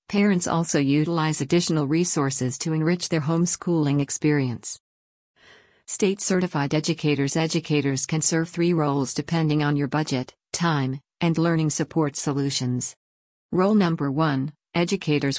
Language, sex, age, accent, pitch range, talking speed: English, female, 50-69, American, 140-170 Hz, 120 wpm